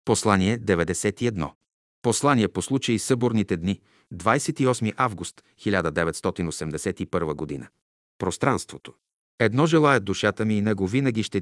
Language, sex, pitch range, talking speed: Bulgarian, male, 95-125 Hz, 100 wpm